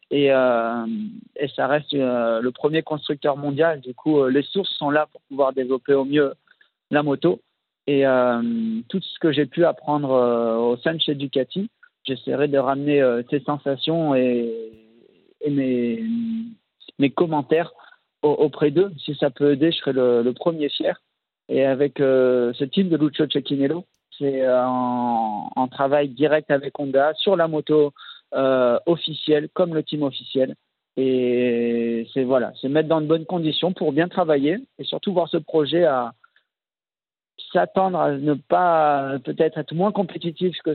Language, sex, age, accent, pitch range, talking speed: French, male, 50-69, French, 135-160 Hz, 165 wpm